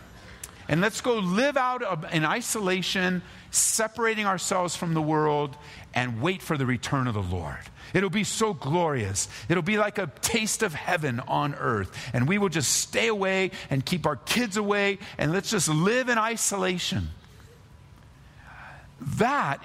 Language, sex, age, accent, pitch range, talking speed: English, male, 50-69, American, 145-210 Hz, 155 wpm